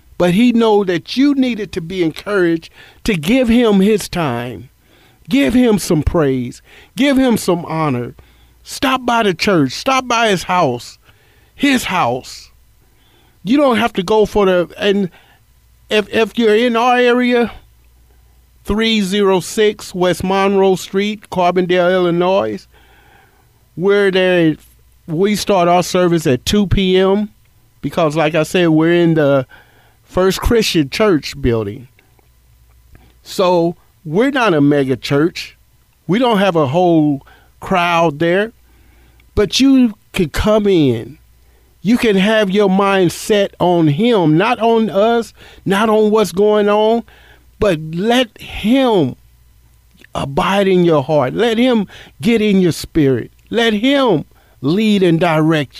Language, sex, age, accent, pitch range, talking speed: English, male, 50-69, American, 150-220 Hz, 135 wpm